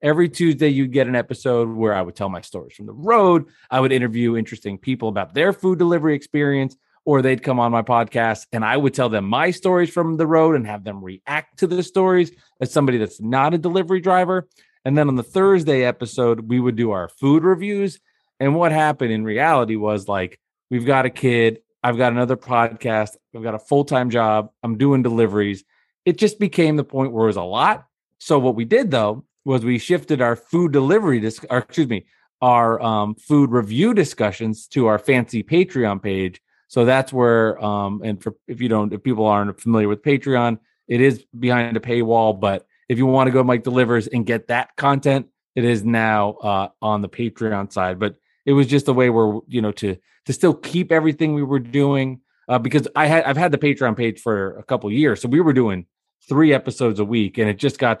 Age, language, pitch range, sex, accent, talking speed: 30-49, English, 110-145 Hz, male, American, 215 wpm